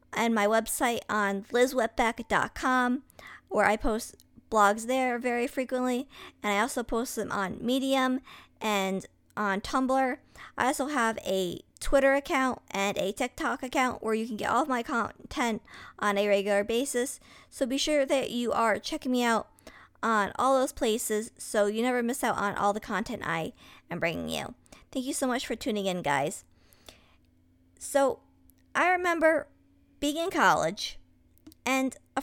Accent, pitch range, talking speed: American, 205-265 Hz, 160 wpm